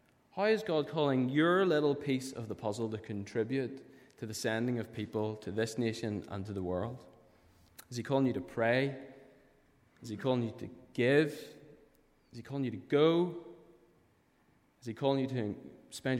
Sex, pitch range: male, 110-135 Hz